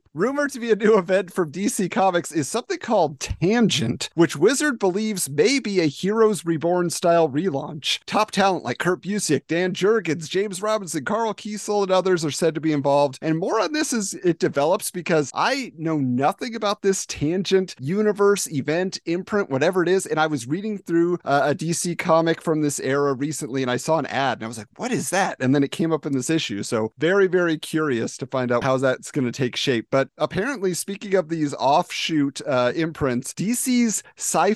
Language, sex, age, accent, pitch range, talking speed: English, male, 40-59, American, 140-200 Hz, 205 wpm